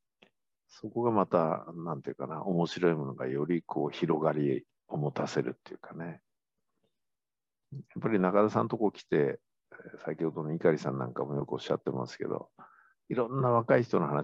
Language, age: Japanese, 50-69